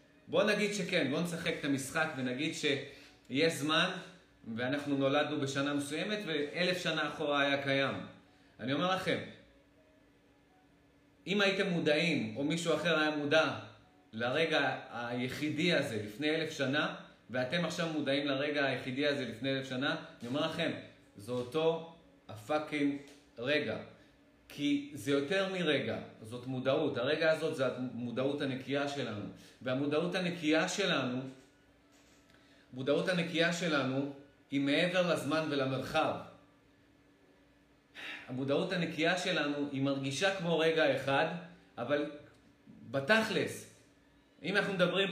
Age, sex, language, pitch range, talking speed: 30-49, male, Hebrew, 135-170 Hz, 115 wpm